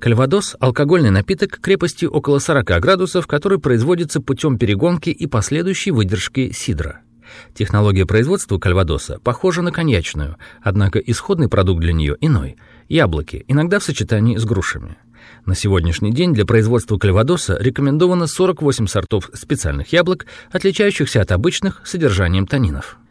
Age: 40-59